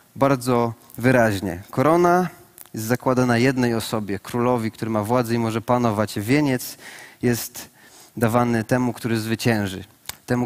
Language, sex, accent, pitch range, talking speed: Polish, male, native, 120-140 Hz, 120 wpm